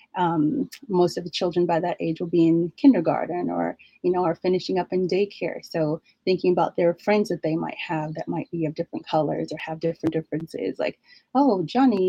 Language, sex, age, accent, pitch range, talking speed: English, female, 30-49, American, 170-220 Hz, 210 wpm